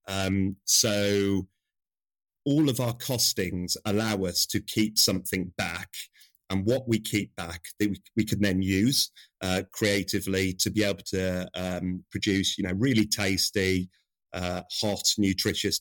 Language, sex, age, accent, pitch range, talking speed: English, male, 30-49, British, 95-110 Hz, 145 wpm